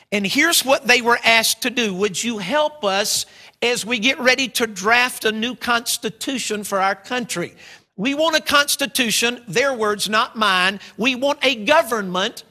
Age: 50-69